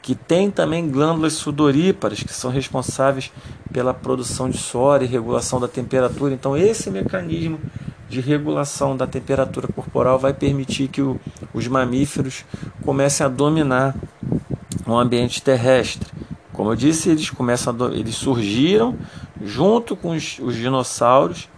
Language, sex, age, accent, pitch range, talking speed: Portuguese, male, 40-59, Brazilian, 125-150 Hz, 130 wpm